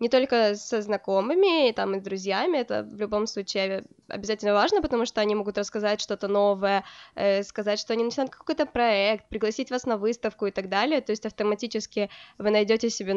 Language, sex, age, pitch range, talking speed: Ukrainian, female, 20-39, 205-245 Hz, 180 wpm